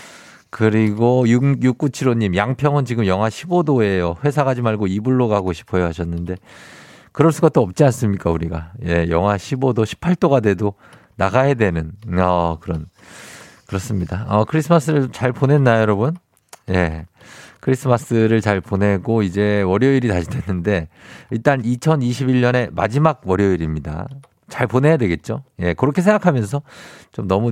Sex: male